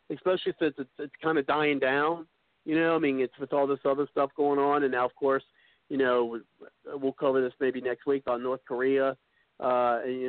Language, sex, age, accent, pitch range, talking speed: English, male, 50-69, American, 125-175 Hz, 225 wpm